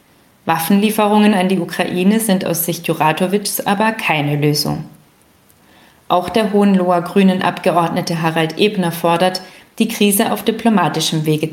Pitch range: 165-205 Hz